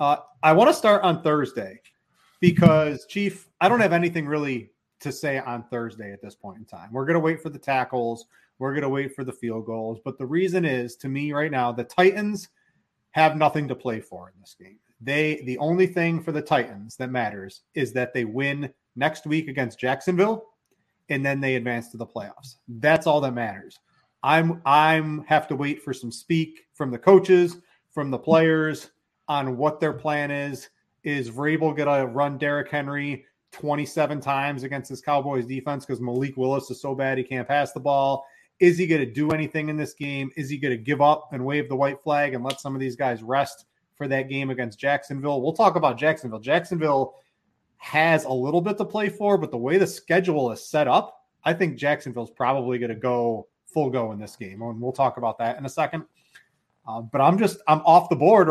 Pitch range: 130-155 Hz